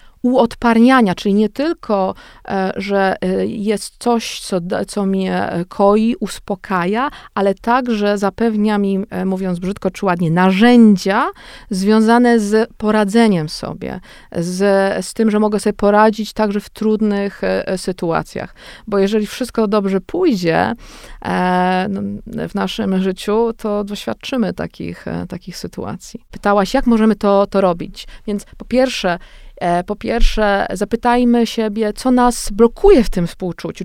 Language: Polish